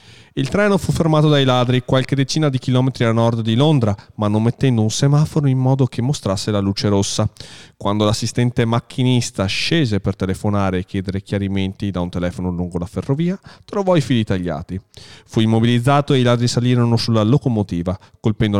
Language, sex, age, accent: Italian, male, 40-59, native